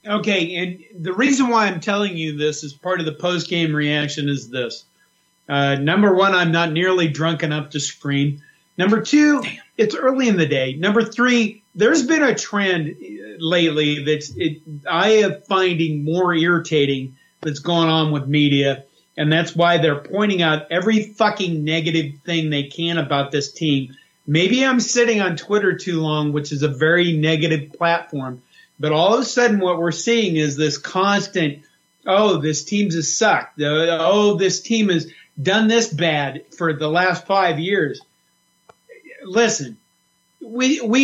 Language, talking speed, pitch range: English, 160 wpm, 155-210 Hz